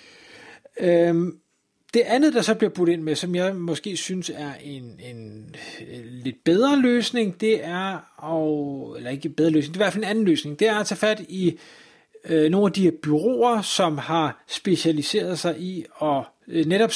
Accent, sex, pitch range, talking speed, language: native, male, 150-185 Hz, 175 wpm, Danish